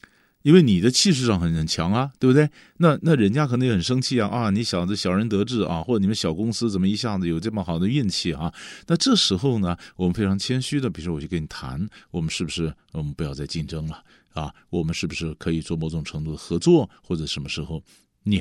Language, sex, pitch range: Chinese, male, 85-145 Hz